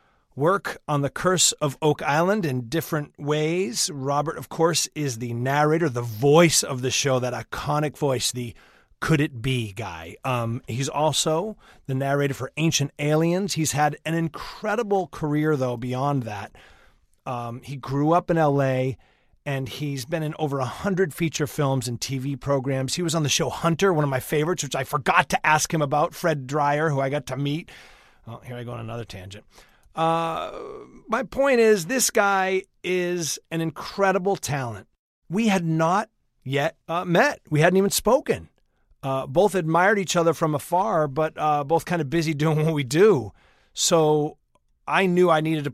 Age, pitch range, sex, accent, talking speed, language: 30-49, 135-170 Hz, male, American, 175 wpm, English